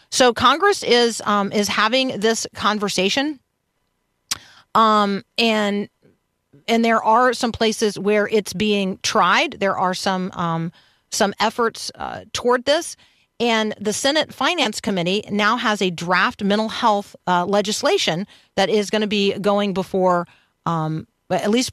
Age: 40-59